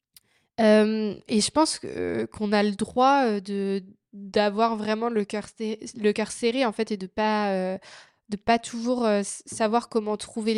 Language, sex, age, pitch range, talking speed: French, female, 20-39, 205-235 Hz, 165 wpm